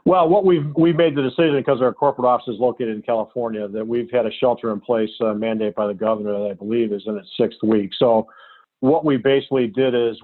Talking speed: 240 wpm